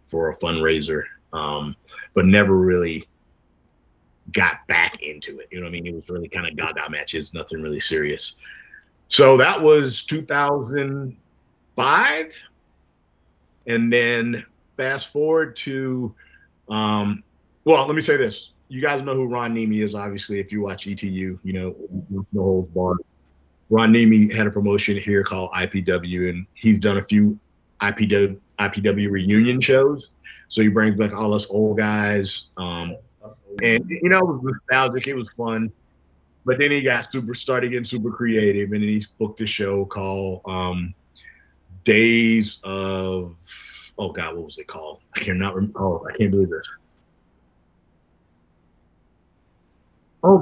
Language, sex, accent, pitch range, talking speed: English, male, American, 90-120 Hz, 150 wpm